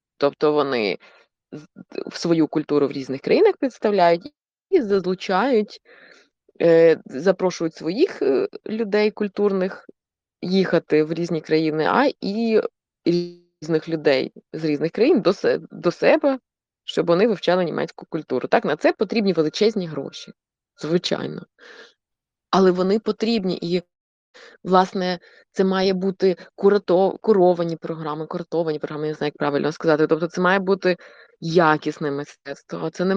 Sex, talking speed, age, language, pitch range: female, 120 wpm, 20-39, Ukrainian, 155-195 Hz